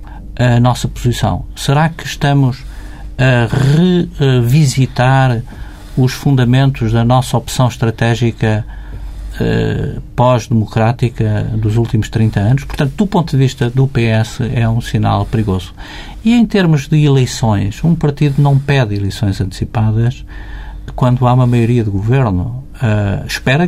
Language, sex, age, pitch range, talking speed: Portuguese, male, 50-69, 110-140 Hz, 120 wpm